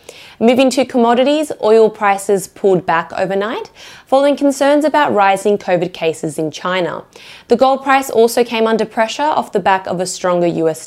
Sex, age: female, 20-39